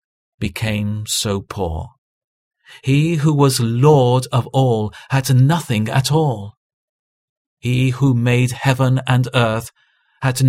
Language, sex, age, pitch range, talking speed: English, male, 40-59, 105-135 Hz, 115 wpm